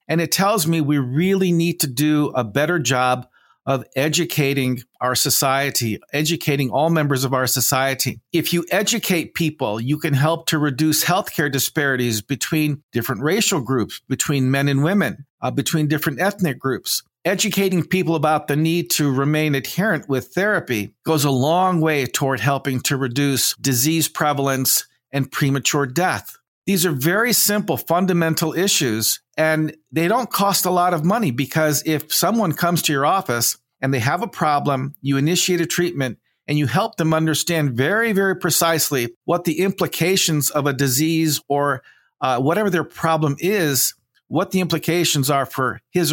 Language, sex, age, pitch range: English, male, 50-69, 135-170 Hz